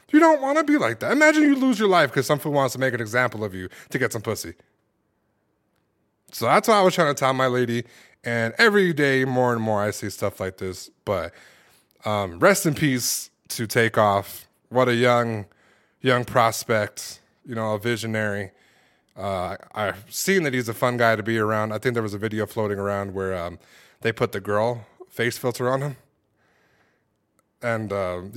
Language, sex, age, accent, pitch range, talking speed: English, male, 20-39, American, 110-150 Hz, 200 wpm